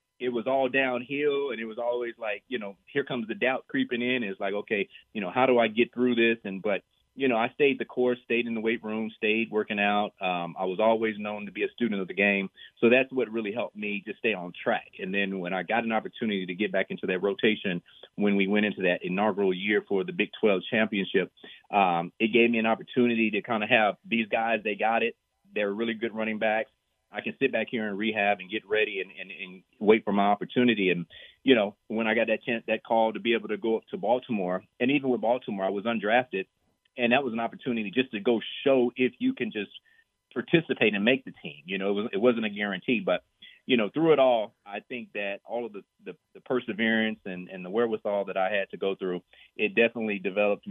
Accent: American